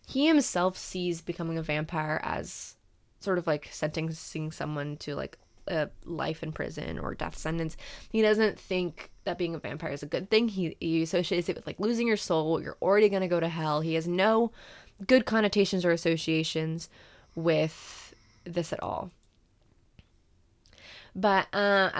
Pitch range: 160-200 Hz